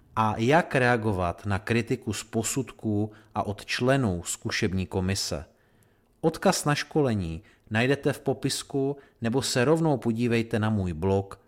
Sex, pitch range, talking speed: male, 105-135 Hz, 130 wpm